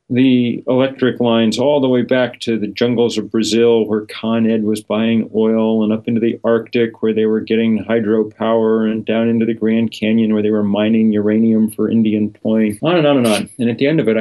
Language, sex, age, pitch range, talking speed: English, male, 40-59, 105-120 Hz, 225 wpm